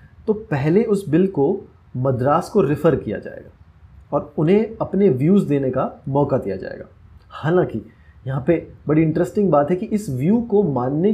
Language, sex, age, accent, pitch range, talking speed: Hindi, male, 30-49, native, 125-180 Hz, 165 wpm